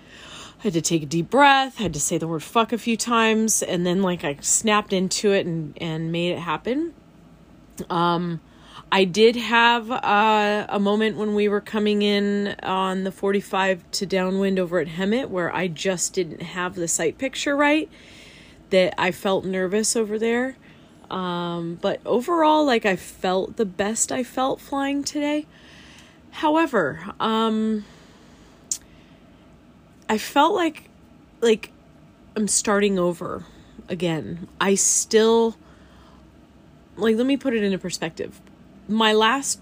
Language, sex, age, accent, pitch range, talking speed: English, female, 30-49, American, 175-225 Hz, 145 wpm